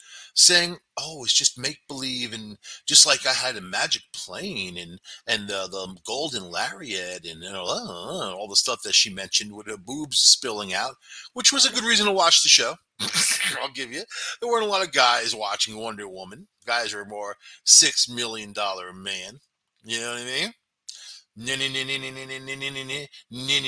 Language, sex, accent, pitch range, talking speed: English, male, American, 110-150 Hz, 160 wpm